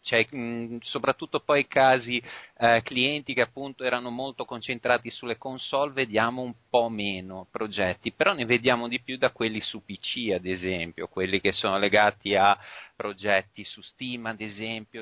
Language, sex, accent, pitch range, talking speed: Italian, male, native, 95-120 Hz, 165 wpm